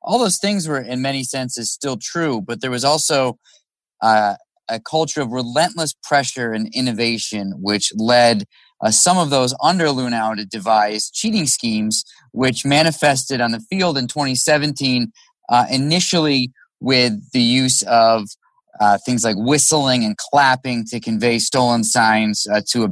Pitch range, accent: 110-135 Hz, American